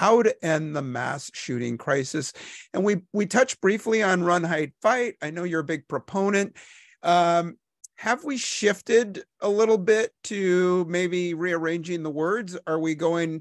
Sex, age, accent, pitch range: male, 50-69, American, 135-175 Hz